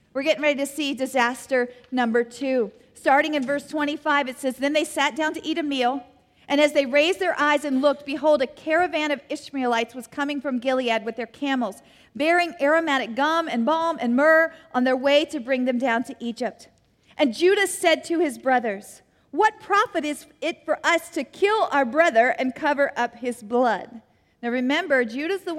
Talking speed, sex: 195 wpm, female